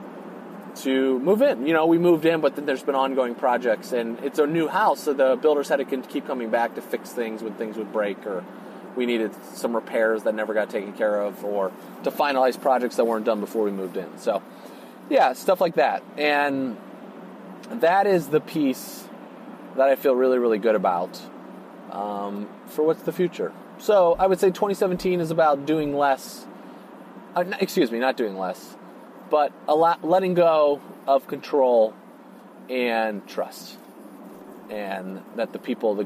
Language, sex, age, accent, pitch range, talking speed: English, male, 30-49, American, 130-190 Hz, 180 wpm